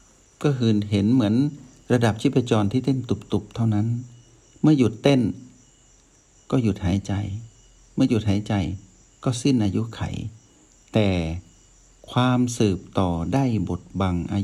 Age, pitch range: 60-79, 95-120 Hz